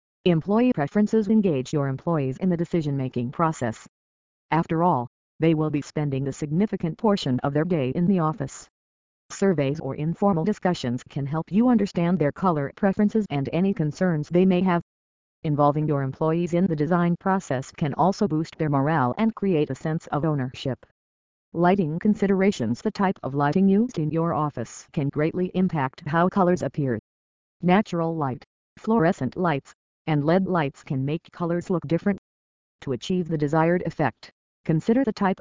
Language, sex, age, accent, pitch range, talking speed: English, female, 50-69, American, 135-185 Hz, 160 wpm